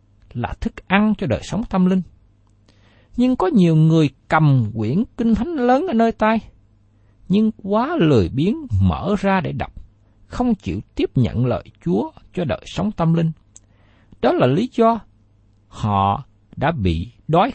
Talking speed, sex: 160 wpm, male